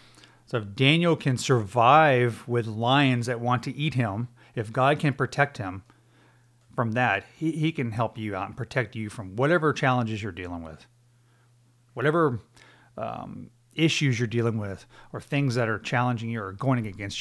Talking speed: 170 wpm